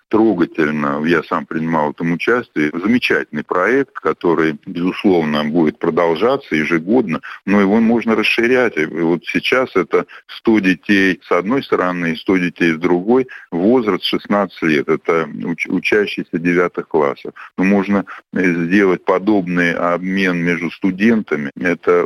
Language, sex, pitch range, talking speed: Russian, male, 85-100 Hz, 125 wpm